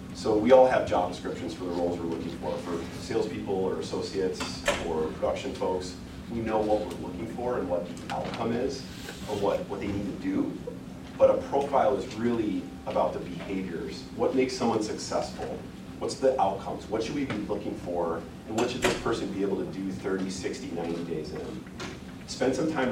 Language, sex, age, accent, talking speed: English, male, 30-49, American, 195 wpm